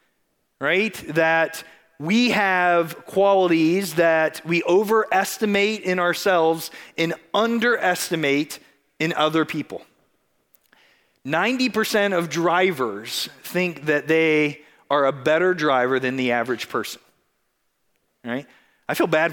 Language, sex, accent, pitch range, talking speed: English, male, American, 160-215 Hz, 100 wpm